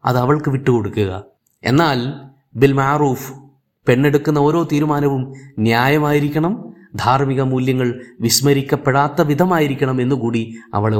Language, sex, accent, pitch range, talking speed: Malayalam, male, native, 125-155 Hz, 80 wpm